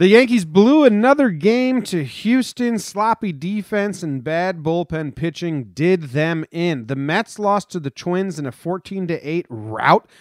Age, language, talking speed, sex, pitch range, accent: 30-49, English, 155 wpm, male, 140-195 Hz, American